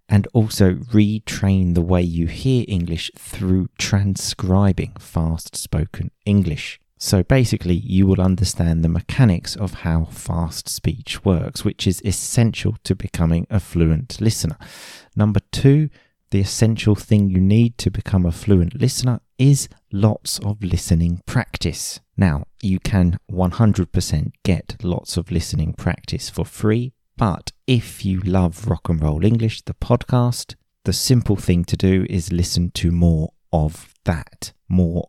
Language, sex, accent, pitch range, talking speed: English, male, British, 85-105 Hz, 140 wpm